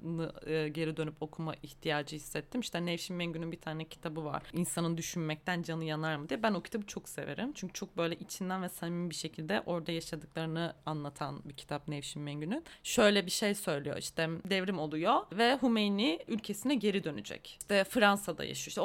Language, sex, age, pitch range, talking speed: Turkish, female, 30-49, 160-200 Hz, 170 wpm